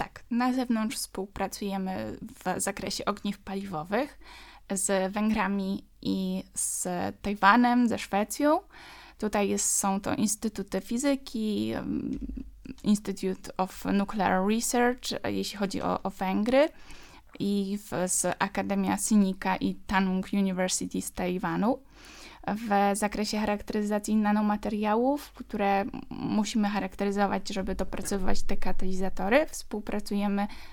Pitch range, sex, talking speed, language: 195-230 Hz, female, 100 wpm, Polish